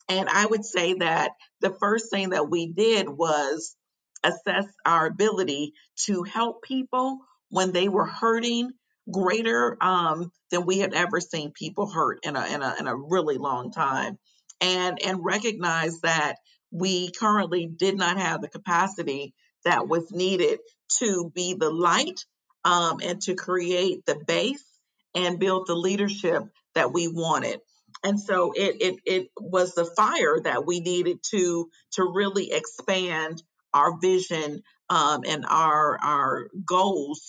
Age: 50-69